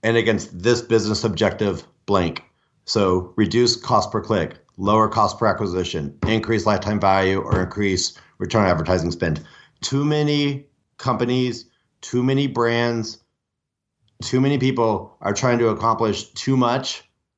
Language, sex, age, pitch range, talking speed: English, male, 30-49, 100-120 Hz, 135 wpm